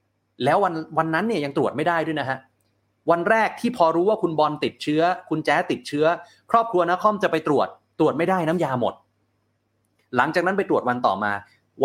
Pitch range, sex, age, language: 115-180 Hz, male, 30-49, Thai